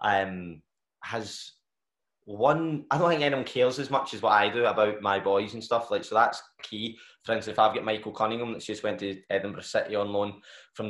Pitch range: 105-125 Hz